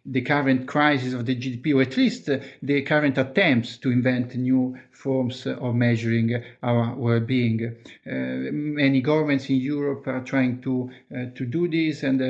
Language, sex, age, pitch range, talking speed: English, male, 50-69, 125-145 Hz, 170 wpm